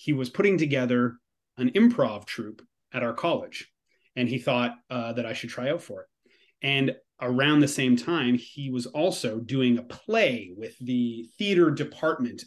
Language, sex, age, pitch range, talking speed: English, male, 30-49, 125-165 Hz, 175 wpm